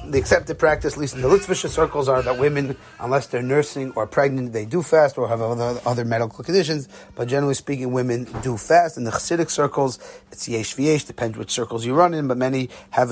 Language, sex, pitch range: English, male, 120-140 Hz